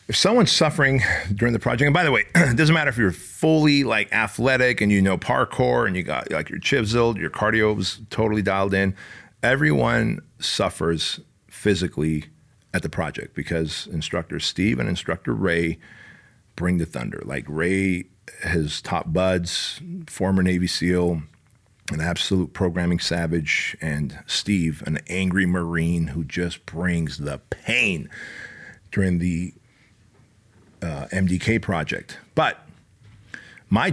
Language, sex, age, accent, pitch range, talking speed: English, male, 40-59, American, 90-115 Hz, 140 wpm